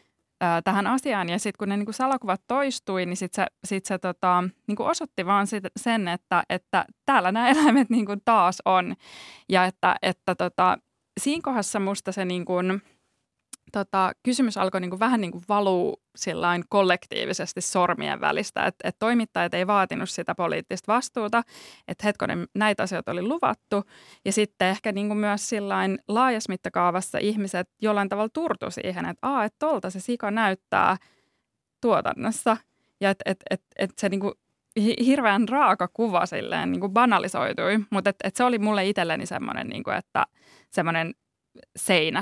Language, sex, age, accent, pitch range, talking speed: Finnish, female, 20-39, native, 180-210 Hz, 145 wpm